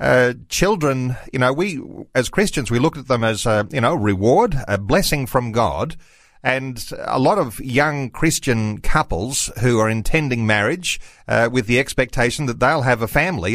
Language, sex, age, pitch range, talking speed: English, male, 40-59, 115-150 Hz, 175 wpm